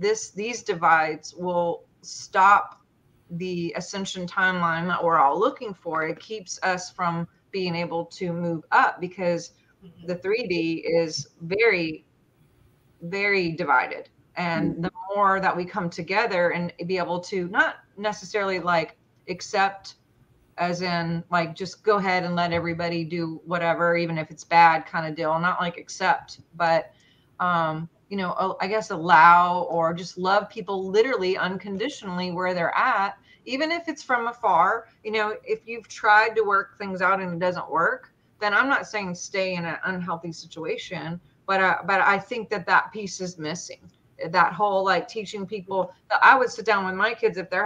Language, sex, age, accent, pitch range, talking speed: English, female, 30-49, American, 170-200 Hz, 165 wpm